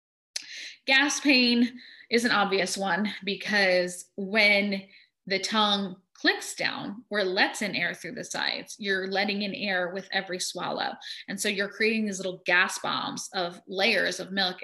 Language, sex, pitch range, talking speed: English, female, 190-240 Hz, 155 wpm